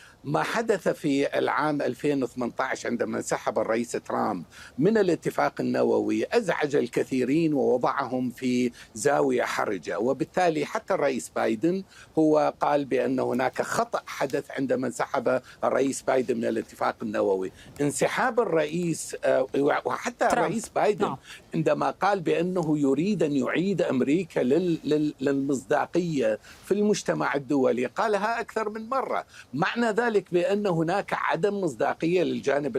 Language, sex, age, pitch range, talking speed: Arabic, male, 50-69, 145-210 Hz, 115 wpm